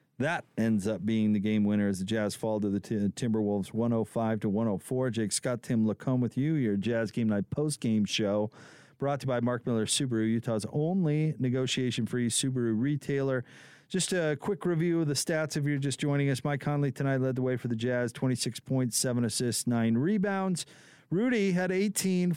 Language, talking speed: English, 195 wpm